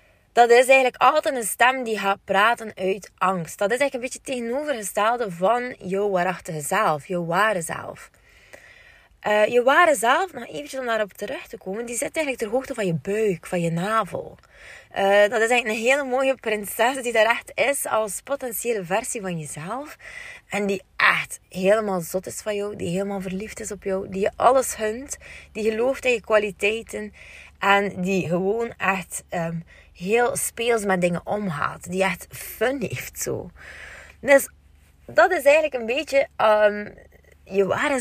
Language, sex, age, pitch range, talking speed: Dutch, female, 20-39, 190-250 Hz, 175 wpm